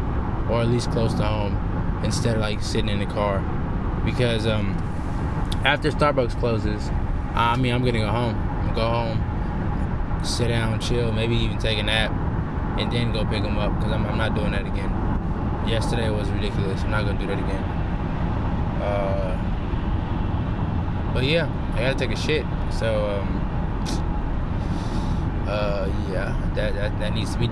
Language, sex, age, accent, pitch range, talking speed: English, male, 20-39, American, 90-110 Hz, 160 wpm